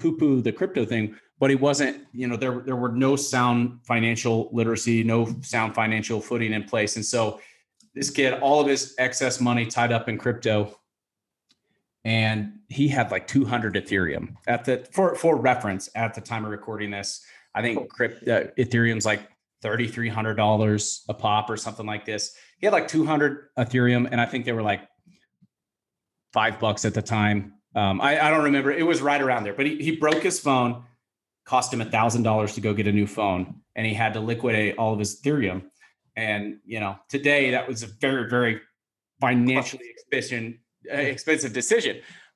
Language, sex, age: English, male, 30-49